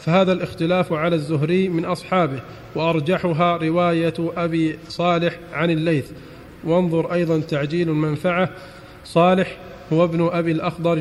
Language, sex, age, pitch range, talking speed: Arabic, male, 40-59, 160-180 Hz, 115 wpm